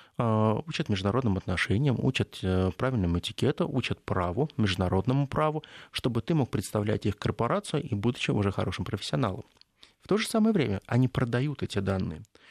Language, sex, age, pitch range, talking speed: Russian, male, 20-39, 110-145 Hz, 145 wpm